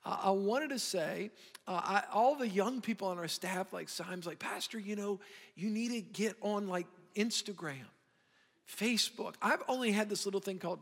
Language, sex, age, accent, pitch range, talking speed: English, male, 50-69, American, 185-215 Hz, 195 wpm